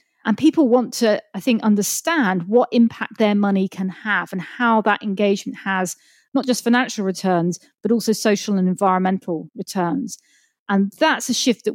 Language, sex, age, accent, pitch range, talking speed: English, female, 40-59, British, 190-235 Hz, 170 wpm